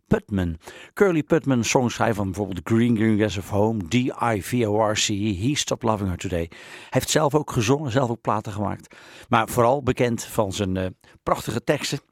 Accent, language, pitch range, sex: Dutch, English, 95-125 Hz, male